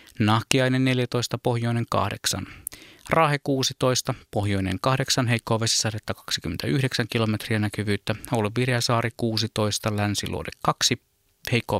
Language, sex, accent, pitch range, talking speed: Finnish, male, native, 110-130 Hz, 90 wpm